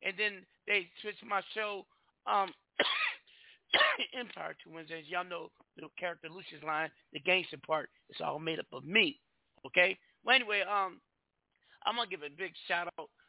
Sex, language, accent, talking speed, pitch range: male, English, American, 165 wpm, 180-245 Hz